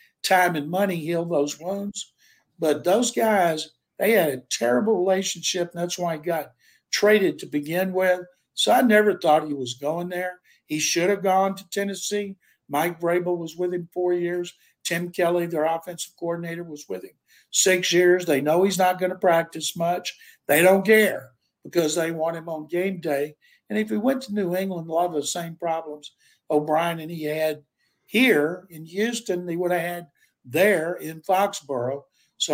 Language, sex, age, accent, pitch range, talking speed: English, male, 60-79, American, 155-180 Hz, 185 wpm